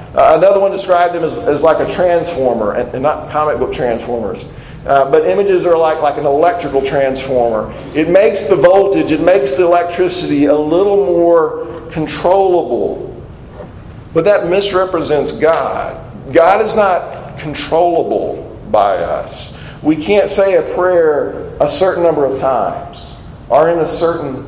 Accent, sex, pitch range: American, male, 140-175 Hz